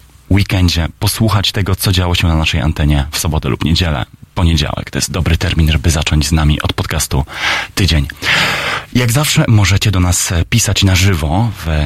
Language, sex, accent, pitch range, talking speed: Polish, male, native, 80-100 Hz, 170 wpm